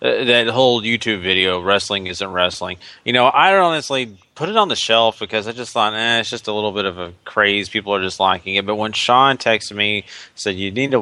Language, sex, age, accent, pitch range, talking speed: English, male, 30-49, American, 95-115 Hz, 240 wpm